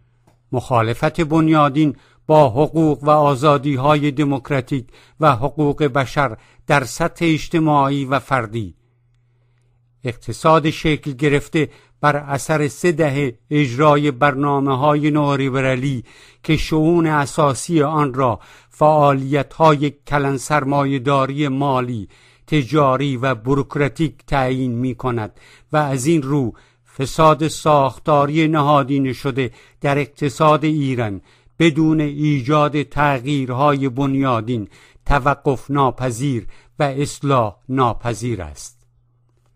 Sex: male